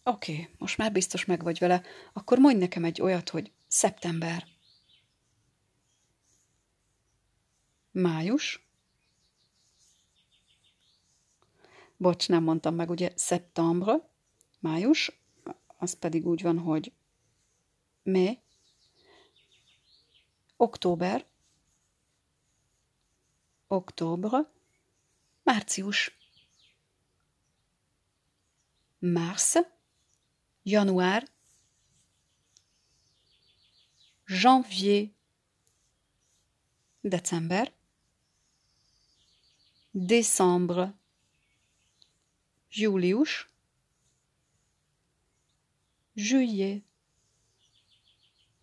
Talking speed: 50 wpm